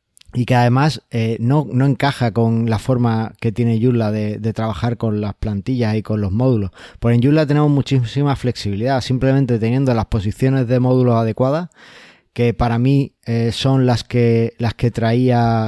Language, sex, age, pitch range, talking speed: Spanish, male, 20-39, 110-130 Hz, 175 wpm